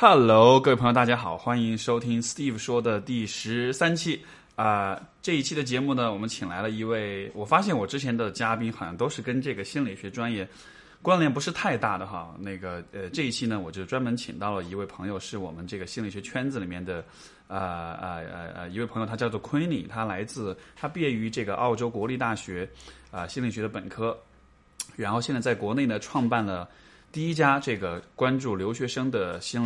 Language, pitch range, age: Chinese, 95-120 Hz, 20-39